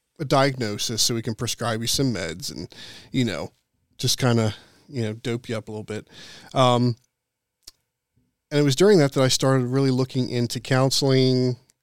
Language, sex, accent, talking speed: English, male, American, 185 wpm